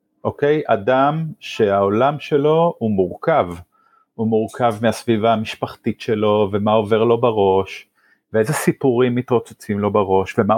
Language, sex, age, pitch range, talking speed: Hebrew, male, 30-49, 100-125 Hz, 120 wpm